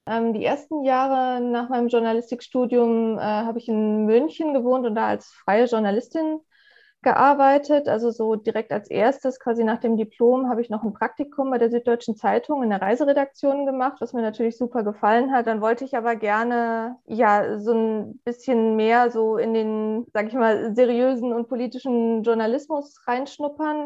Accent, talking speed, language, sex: German, 165 wpm, German, female